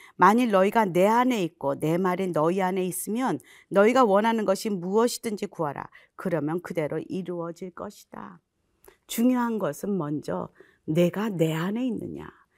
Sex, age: female, 40-59